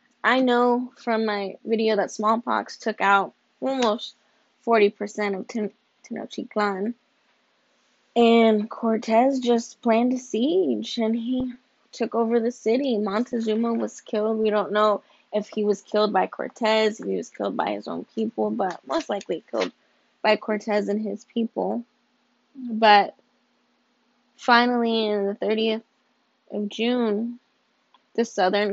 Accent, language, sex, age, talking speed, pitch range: American, English, female, 10-29, 130 wpm, 205-230 Hz